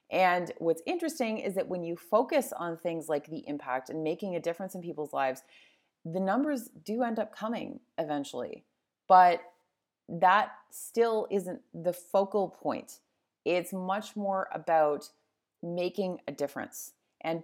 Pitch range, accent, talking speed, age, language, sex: 170-220 Hz, American, 145 wpm, 30-49, English, female